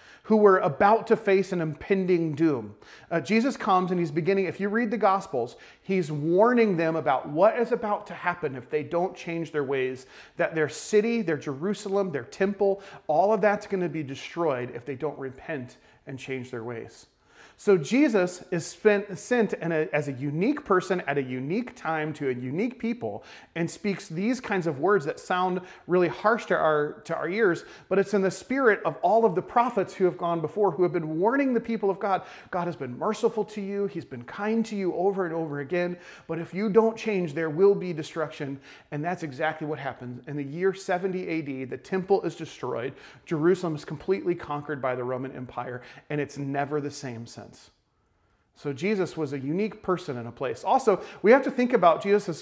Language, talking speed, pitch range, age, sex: English, 200 wpm, 145-200 Hz, 30-49, male